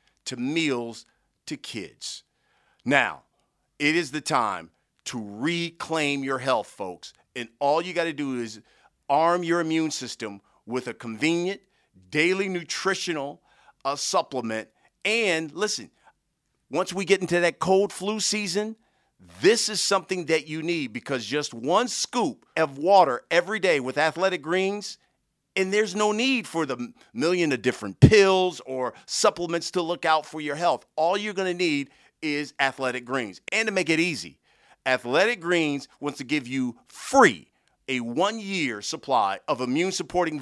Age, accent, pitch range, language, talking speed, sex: 50-69, American, 130-185 Hz, English, 150 wpm, male